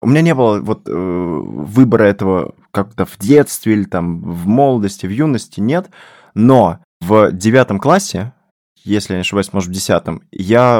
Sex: male